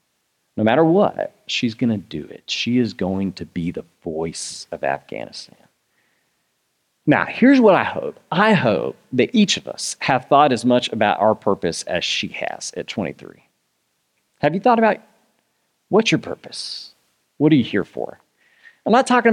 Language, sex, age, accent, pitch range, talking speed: English, male, 40-59, American, 110-150 Hz, 170 wpm